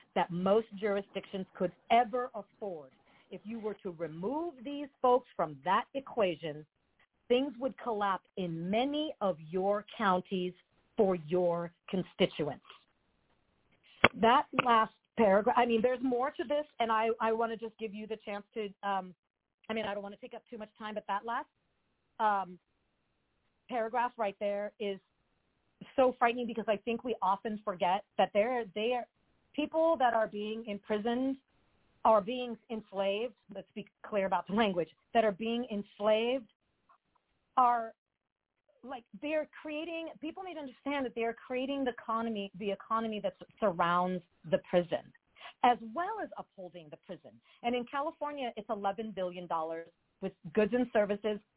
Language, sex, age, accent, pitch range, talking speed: English, female, 40-59, American, 195-245 Hz, 150 wpm